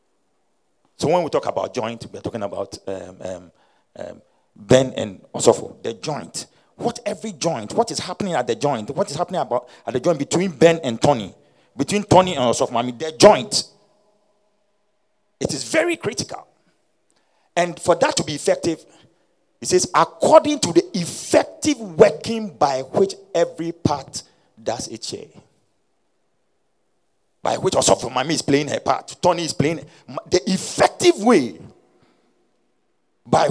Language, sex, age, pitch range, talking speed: English, male, 50-69, 145-220 Hz, 155 wpm